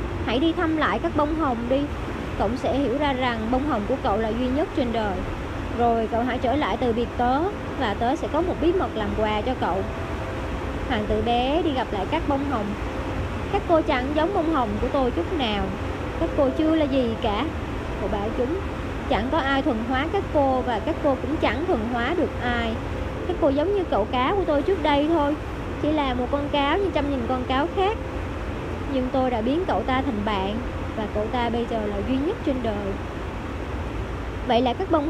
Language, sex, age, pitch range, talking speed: Vietnamese, male, 20-39, 245-315 Hz, 220 wpm